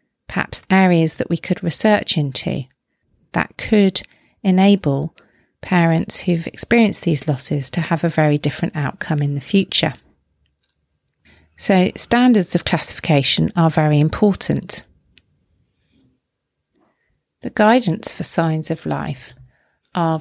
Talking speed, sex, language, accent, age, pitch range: 115 wpm, female, English, British, 40-59, 155-185 Hz